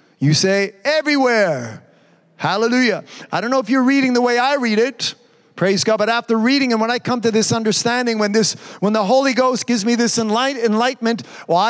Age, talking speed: 40-59, 200 wpm